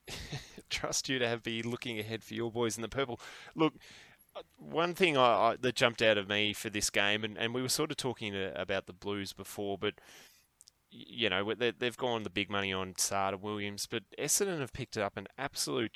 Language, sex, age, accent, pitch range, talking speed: English, male, 10-29, Australian, 95-110 Hz, 205 wpm